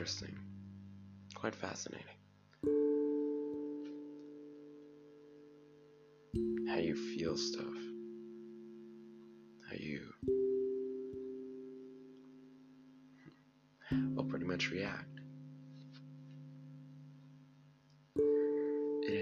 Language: English